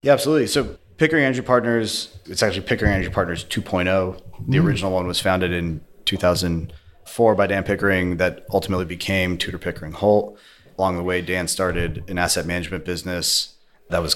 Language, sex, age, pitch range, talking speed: English, male, 30-49, 85-100 Hz, 165 wpm